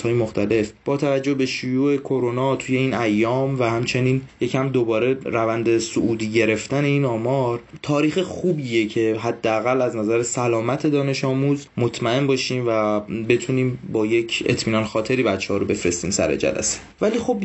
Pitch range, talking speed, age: 115-140 Hz, 150 wpm, 20-39